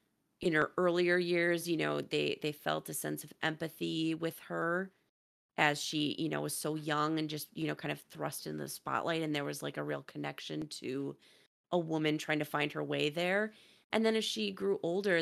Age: 30-49